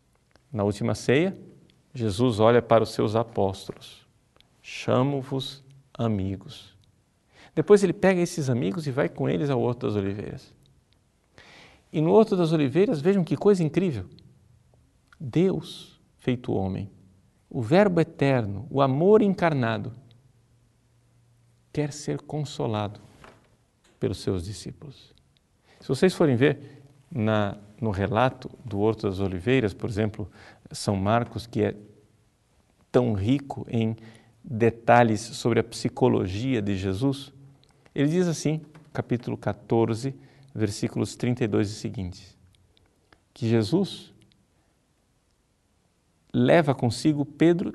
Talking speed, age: 110 wpm, 50-69